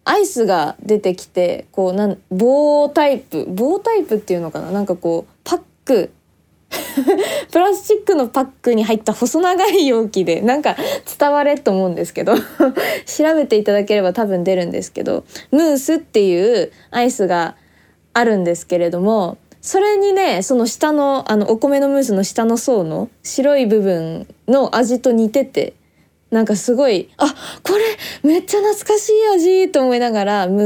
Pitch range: 200-290 Hz